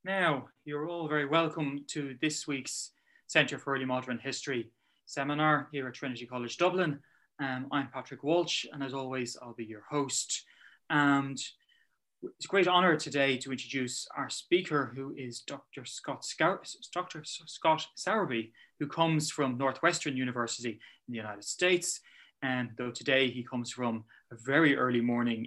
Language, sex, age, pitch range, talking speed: English, male, 20-39, 125-150 Hz, 155 wpm